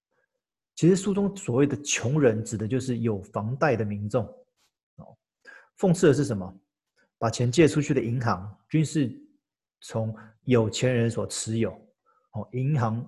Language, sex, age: Chinese, male, 30-49